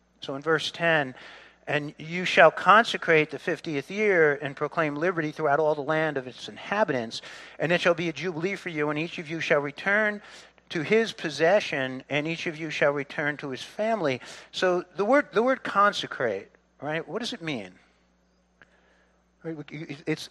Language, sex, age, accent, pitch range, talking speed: English, male, 50-69, American, 145-205 Hz, 175 wpm